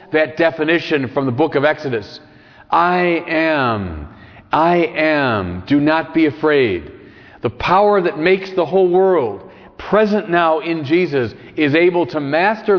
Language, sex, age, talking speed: English, male, 40-59, 140 wpm